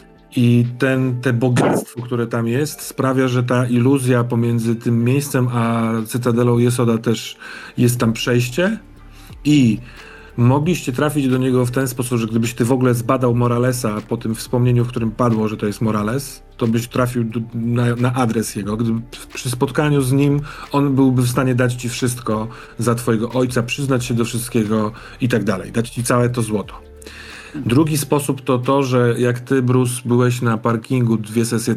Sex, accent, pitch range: male, native, 115-135 Hz